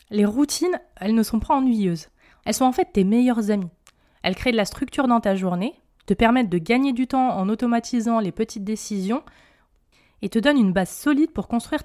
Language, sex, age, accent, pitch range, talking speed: French, female, 20-39, French, 200-255 Hz, 210 wpm